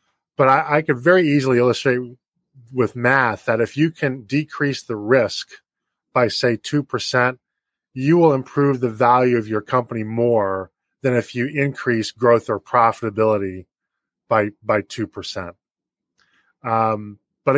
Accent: American